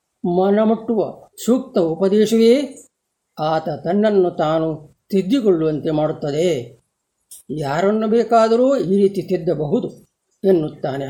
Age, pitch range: 50-69, 170-225 Hz